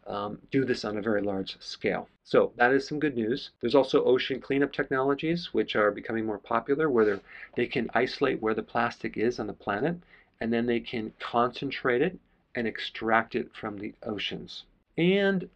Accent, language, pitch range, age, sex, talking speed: American, English, 110-135 Hz, 40-59, male, 185 wpm